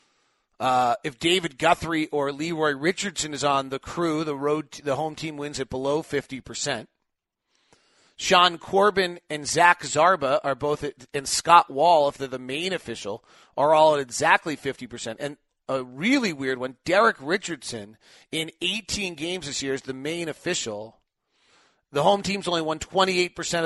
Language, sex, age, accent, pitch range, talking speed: English, male, 40-59, American, 130-160 Hz, 170 wpm